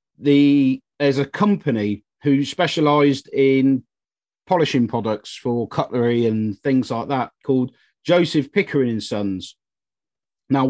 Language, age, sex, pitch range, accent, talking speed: English, 40-59, male, 125-150 Hz, British, 120 wpm